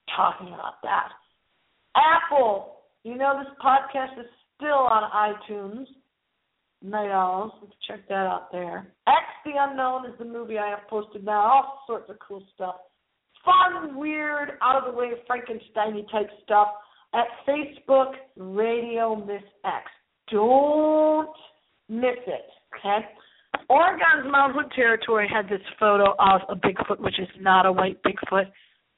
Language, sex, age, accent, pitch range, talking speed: English, female, 40-59, American, 200-265 Hz, 135 wpm